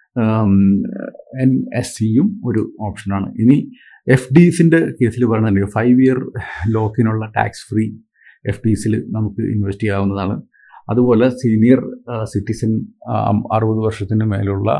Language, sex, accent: Malayalam, male, native